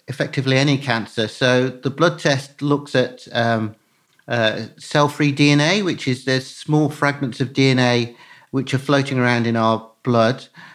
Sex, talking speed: male, 150 wpm